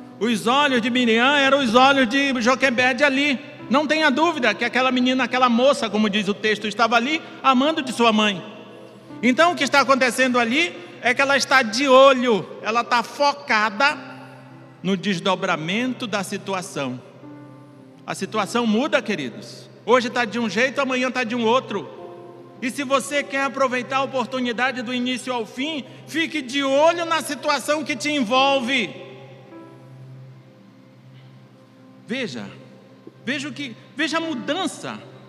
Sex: male